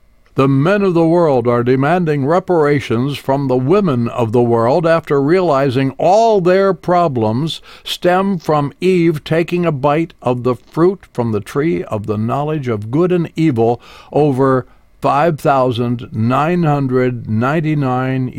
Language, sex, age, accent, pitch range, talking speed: English, male, 60-79, American, 115-155 Hz, 130 wpm